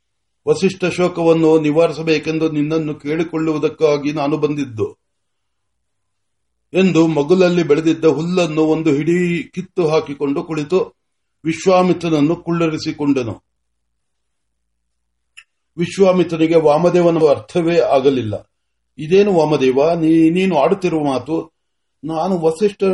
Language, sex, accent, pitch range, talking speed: Marathi, male, native, 145-180 Hz, 40 wpm